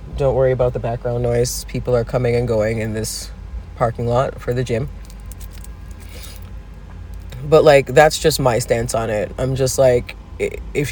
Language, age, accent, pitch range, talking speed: English, 30-49, American, 95-140 Hz, 165 wpm